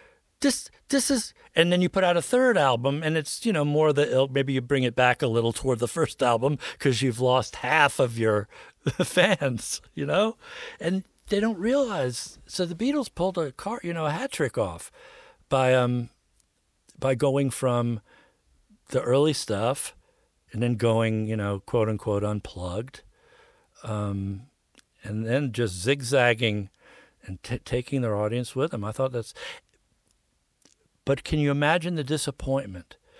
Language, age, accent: English, 50-69, American